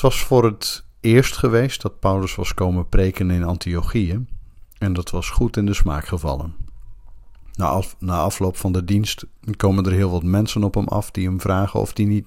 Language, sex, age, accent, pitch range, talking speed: Dutch, male, 50-69, Dutch, 85-105 Hz, 200 wpm